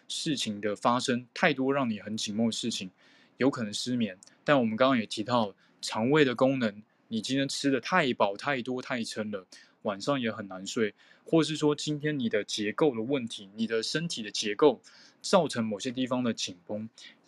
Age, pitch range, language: 20-39, 110-150 Hz, Chinese